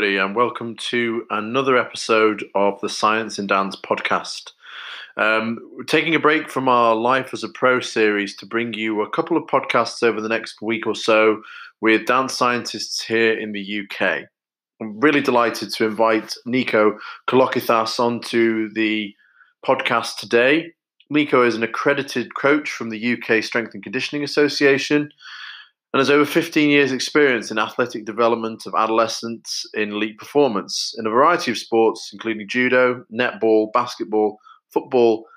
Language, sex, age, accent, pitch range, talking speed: English, male, 30-49, British, 110-135 Hz, 155 wpm